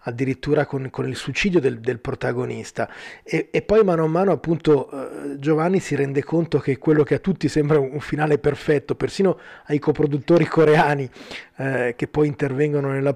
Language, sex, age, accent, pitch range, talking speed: Italian, male, 30-49, native, 140-160 Hz, 175 wpm